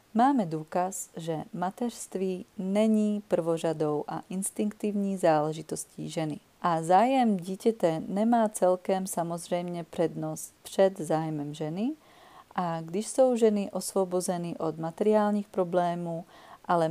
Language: Czech